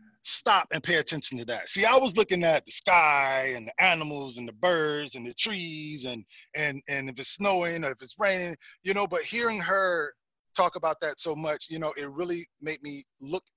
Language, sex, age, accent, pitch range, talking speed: English, male, 20-39, American, 135-170 Hz, 215 wpm